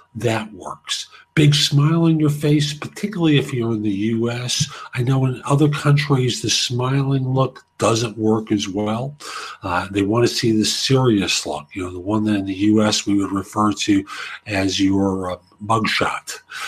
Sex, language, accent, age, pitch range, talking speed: male, English, American, 50-69, 100-140 Hz, 175 wpm